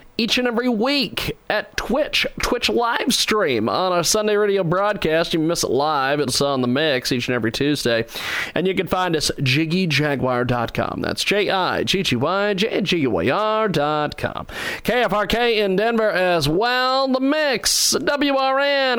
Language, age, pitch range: English, 40-59, 150-215 Hz